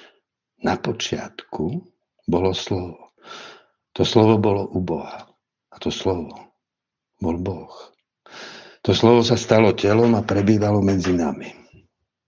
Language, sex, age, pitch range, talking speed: Slovak, male, 60-79, 95-115 Hz, 110 wpm